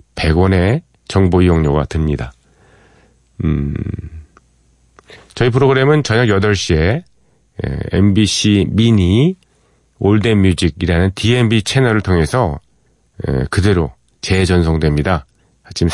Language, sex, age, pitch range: Korean, male, 40-59, 80-110 Hz